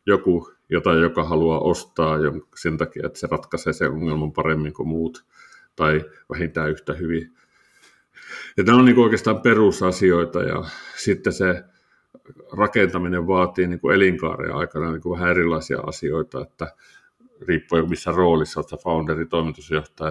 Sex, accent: male, native